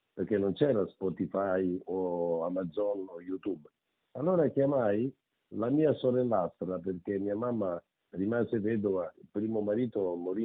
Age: 50-69